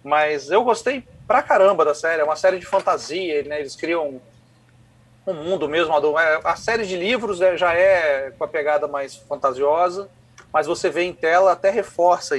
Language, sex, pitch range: Portuguese, male, 135-195 Hz